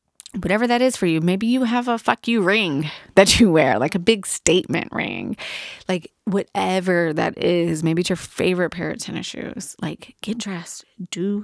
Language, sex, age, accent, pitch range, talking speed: English, female, 20-39, American, 170-205 Hz, 190 wpm